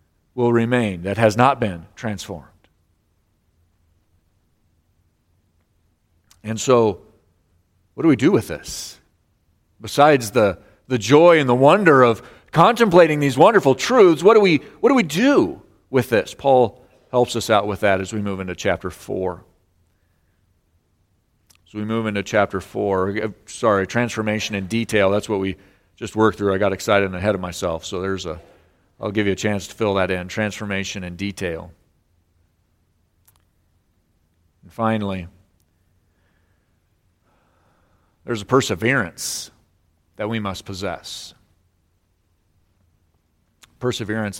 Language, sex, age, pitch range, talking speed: English, male, 40-59, 90-110 Hz, 125 wpm